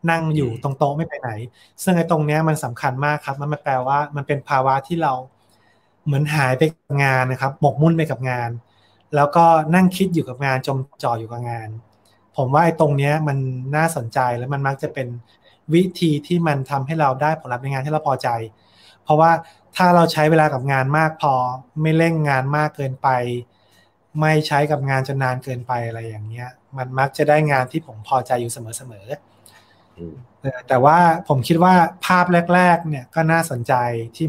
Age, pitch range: 20-39, 125-160 Hz